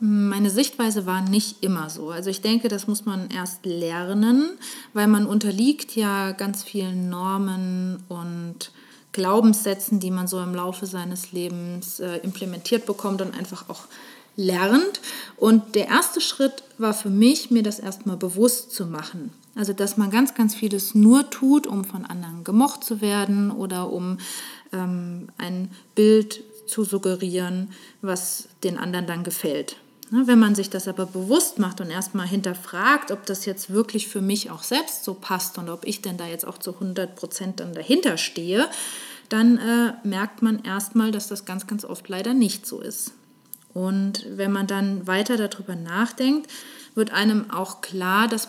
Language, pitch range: German, 185-225 Hz